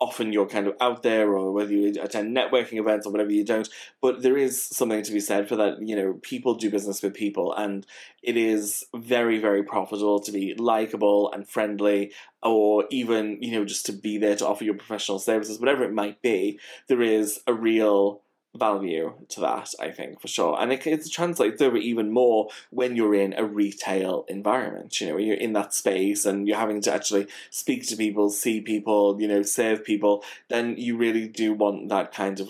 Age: 20-39